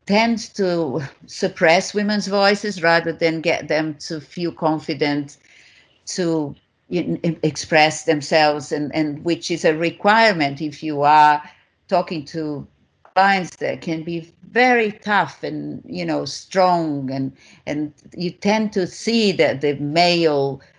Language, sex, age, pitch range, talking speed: English, female, 50-69, 145-185 Hz, 130 wpm